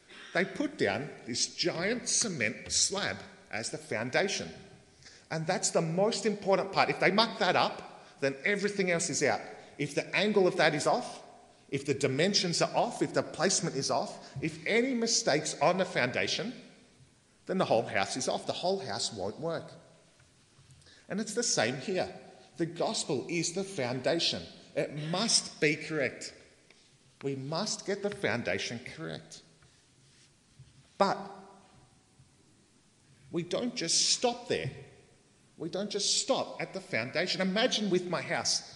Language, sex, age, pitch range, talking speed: English, male, 40-59, 140-205 Hz, 150 wpm